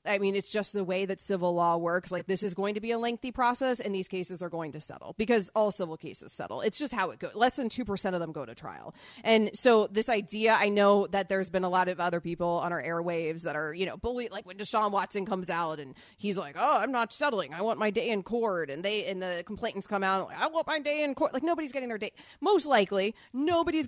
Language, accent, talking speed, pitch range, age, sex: English, American, 265 wpm, 185-225 Hz, 30-49, female